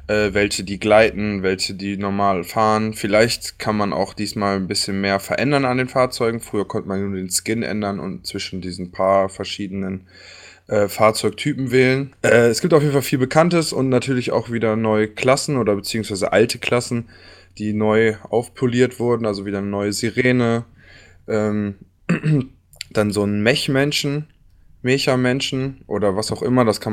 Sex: male